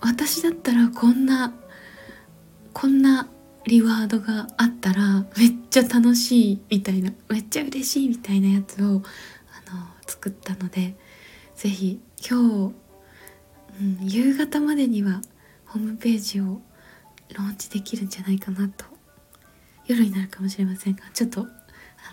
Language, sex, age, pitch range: Japanese, female, 20-39, 195-245 Hz